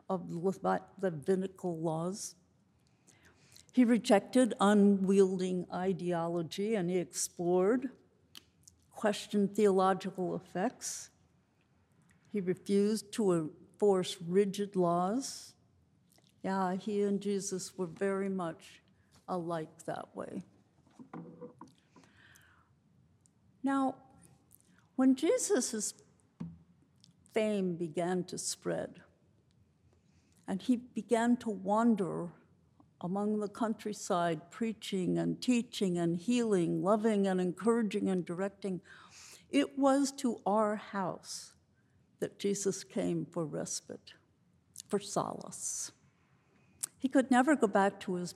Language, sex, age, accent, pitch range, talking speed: English, female, 60-79, American, 180-220 Hz, 90 wpm